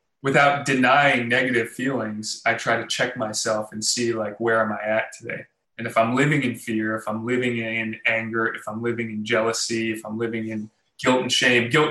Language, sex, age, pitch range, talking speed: English, male, 20-39, 110-135 Hz, 205 wpm